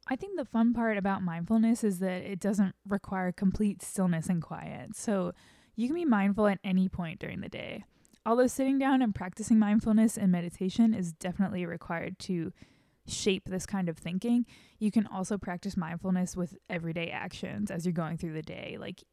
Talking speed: 185 wpm